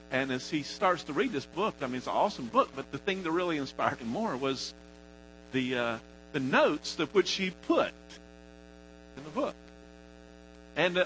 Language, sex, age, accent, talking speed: English, male, 50-69, American, 190 wpm